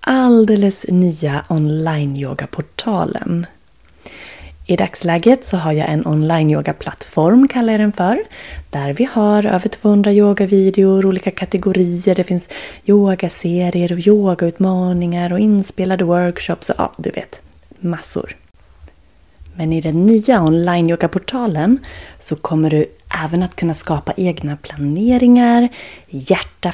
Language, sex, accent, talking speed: Swedish, female, native, 125 wpm